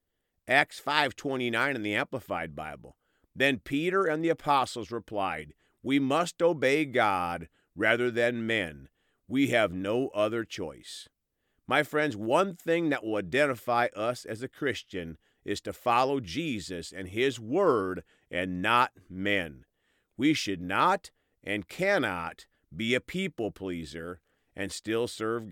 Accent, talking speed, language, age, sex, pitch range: American, 135 wpm, English, 40-59, male, 95-150 Hz